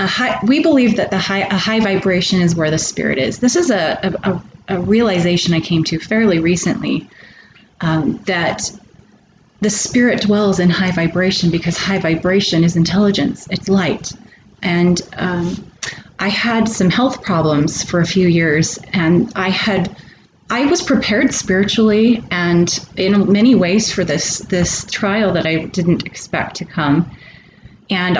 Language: English